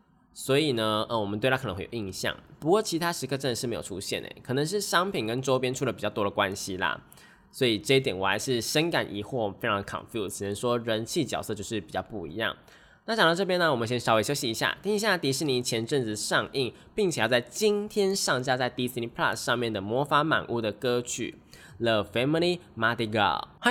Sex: male